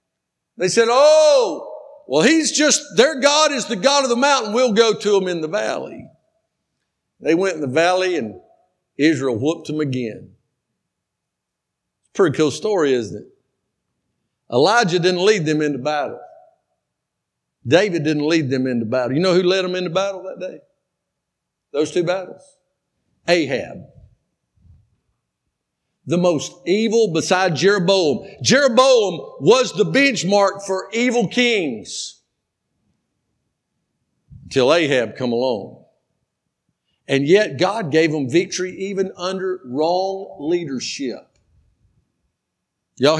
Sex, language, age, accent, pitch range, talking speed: male, English, 60-79, American, 165-250 Hz, 120 wpm